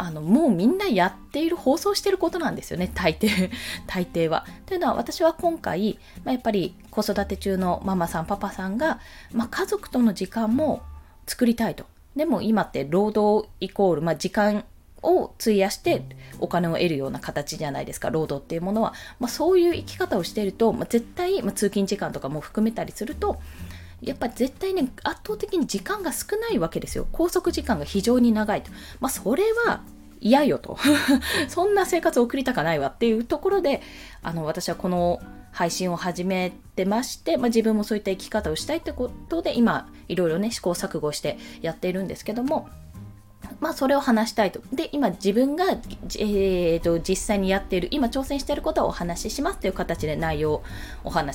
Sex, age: female, 20-39